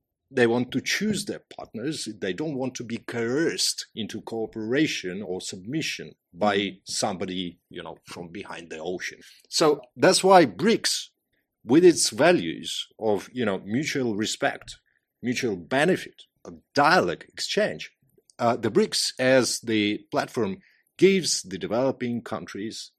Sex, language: male, English